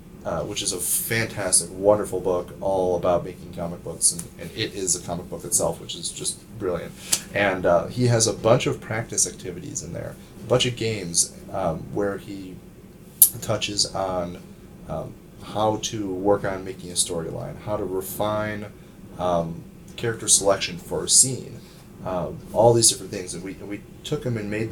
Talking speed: 175 wpm